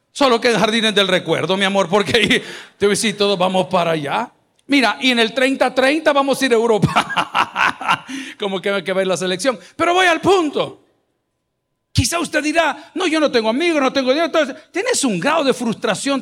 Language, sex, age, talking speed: Spanish, male, 50-69, 190 wpm